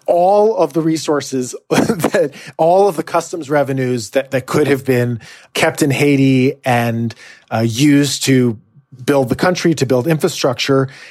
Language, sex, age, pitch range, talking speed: English, male, 30-49, 125-155 Hz, 150 wpm